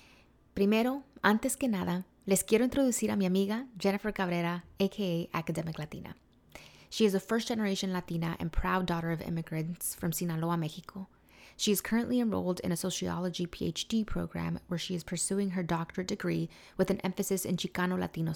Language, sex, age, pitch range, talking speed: English, female, 20-39, 175-200 Hz, 160 wpm